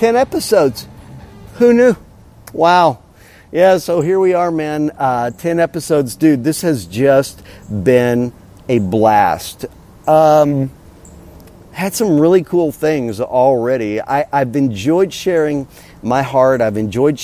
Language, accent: English, American